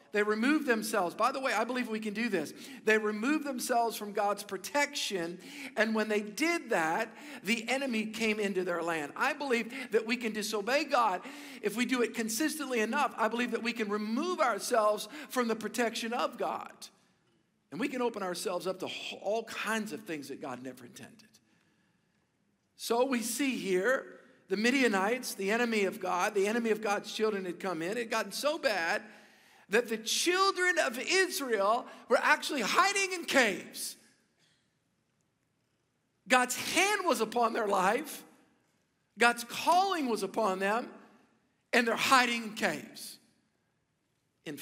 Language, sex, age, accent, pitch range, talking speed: English, male, 50-69, American, 210-260 Hz, 160 wpm